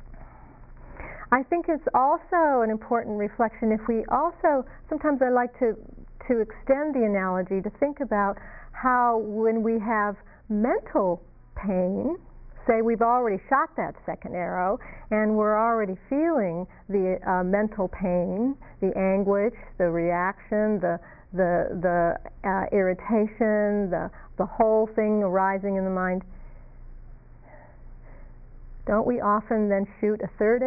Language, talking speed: English, 130 wpm